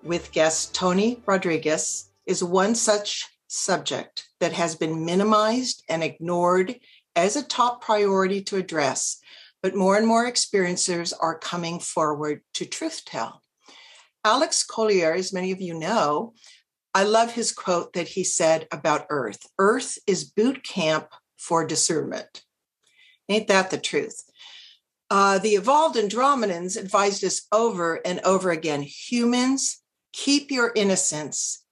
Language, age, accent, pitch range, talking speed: English, 60-79, American, 165-215 Hz, 130 wpm